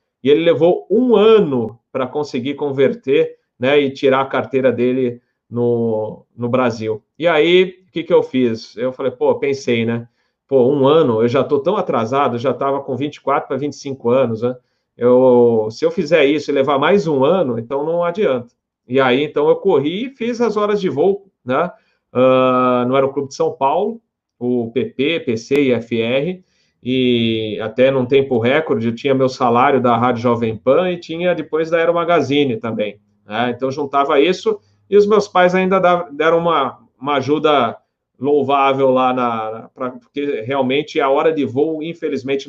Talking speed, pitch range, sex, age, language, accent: 175 wpm, 125-170 Hz, male, 40-59, Portuguese, Brazilian